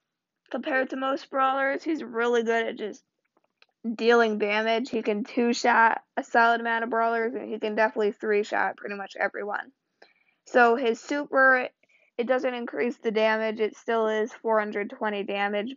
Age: 20-39